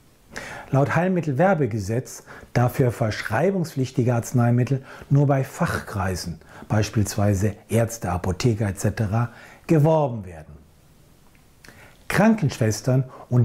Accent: German